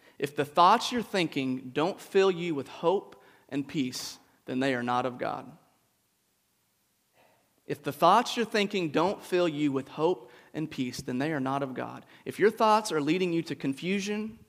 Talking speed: 180 wpm